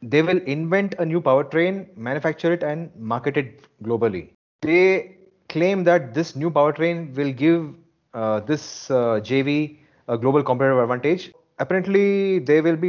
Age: 30-49